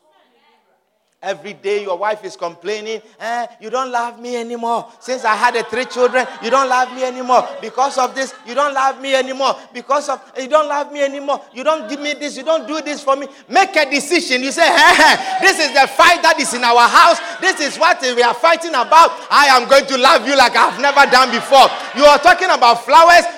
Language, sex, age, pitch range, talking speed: English, male, 30-49, 245-335 Hz, 220 wpm